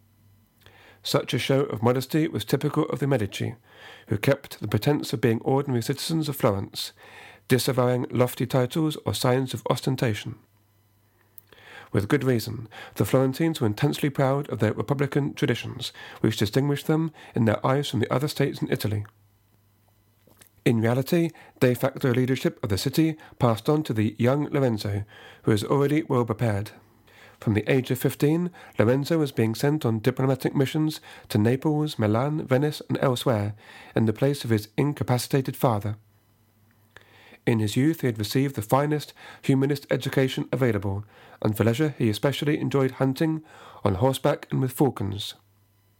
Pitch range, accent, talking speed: 110-140 Hz, British, 155 wpm